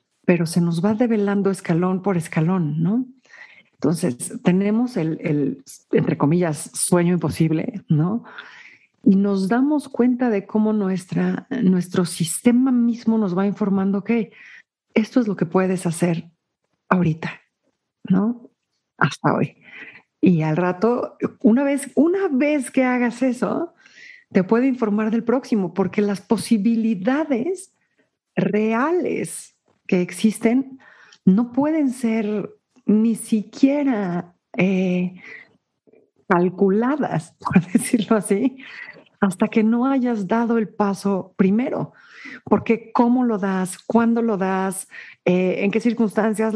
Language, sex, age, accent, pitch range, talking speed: Spanish, female, 50-69, Mexican, 190-255 Hz, 120 wpm